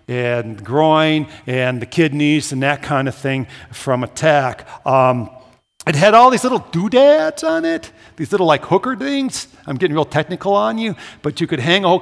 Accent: American